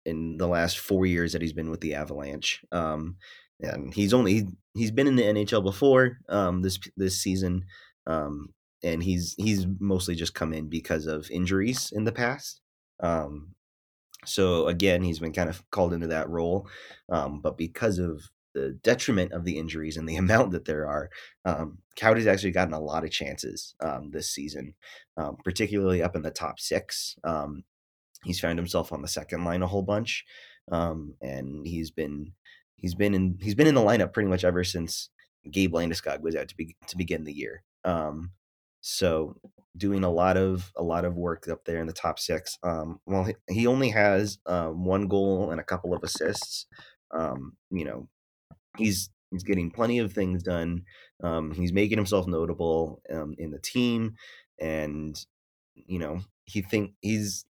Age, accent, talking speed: 20-39, American, 185 wpm